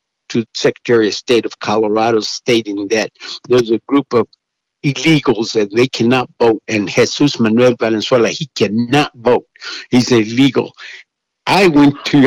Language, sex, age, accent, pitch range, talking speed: English, male, 60-79, American, 110-135 Hz, 140 wpm